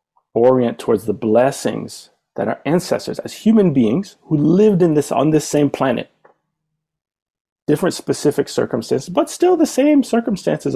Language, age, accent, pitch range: English, 30-49, American, 120-170 Hz